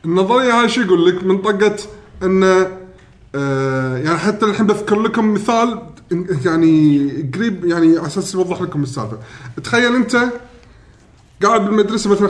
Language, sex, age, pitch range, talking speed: Arabic, male, 20-39, 135-215 Hz, 125 wpm